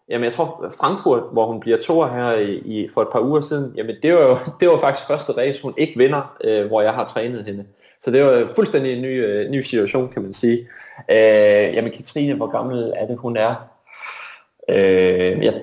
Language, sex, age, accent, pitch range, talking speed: Danish, male, 20-39, native, 105-145 Hz, 215 wpm